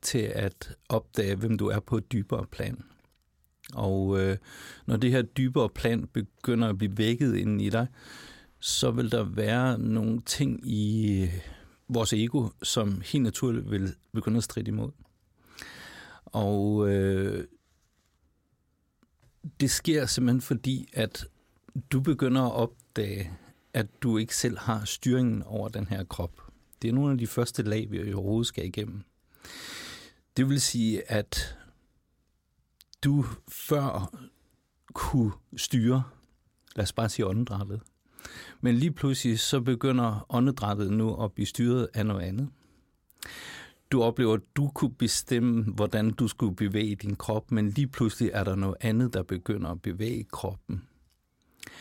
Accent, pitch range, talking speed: native, 105-125 Hz, 140 wpm